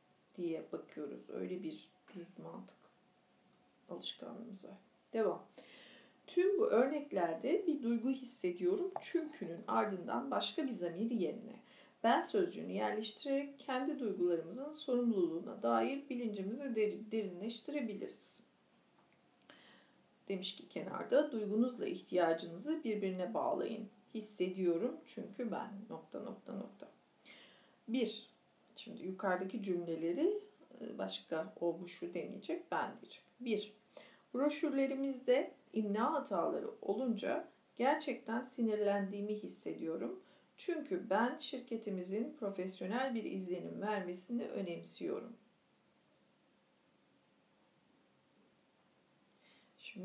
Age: 40-59